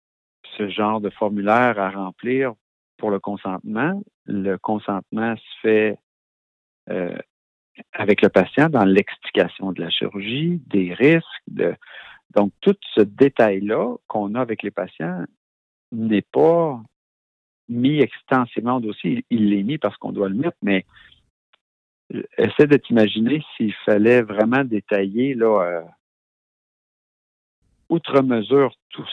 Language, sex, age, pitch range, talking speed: French, male, 50-69, 100-125 Hz, 130 wpm